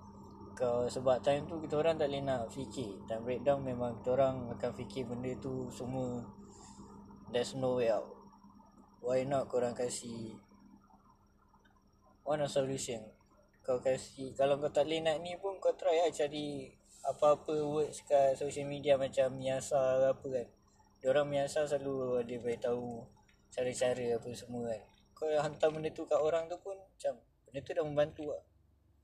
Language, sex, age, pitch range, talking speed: Malay, male, 20-39, 115-145 Hz, 155 wpm